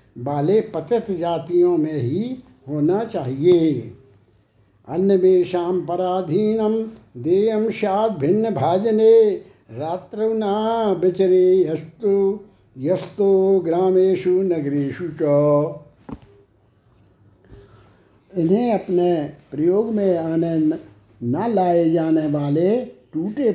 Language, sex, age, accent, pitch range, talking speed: Hindi, male, 60-79, native, 150-205 Hz, 70 wpm